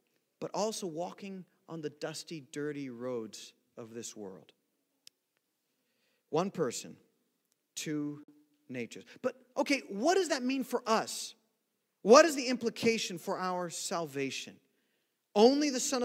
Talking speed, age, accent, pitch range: 125 wpm, 40-59, American, 160-240 Hz